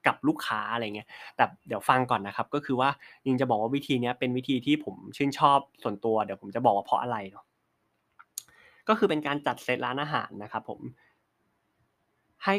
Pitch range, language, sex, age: 115-145 Hz, Thai, male, 20-39